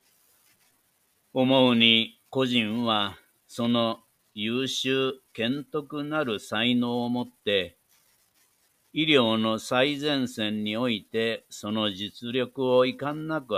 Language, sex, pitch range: Japanese, male, 110-130 Hz